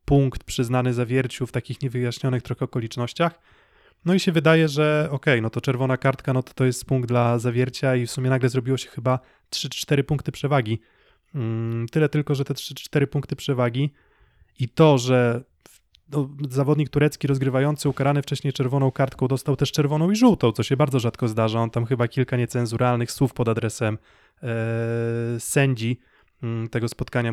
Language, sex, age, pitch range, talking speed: Polish, male, 20-39, 120-140 Hz, 160 wpm